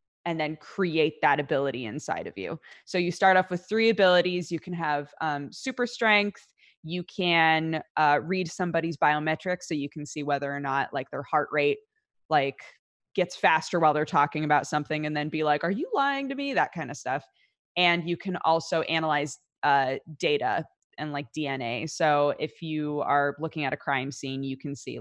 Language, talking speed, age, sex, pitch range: English, 195 wpm, 20-39, female, 145-180 Hz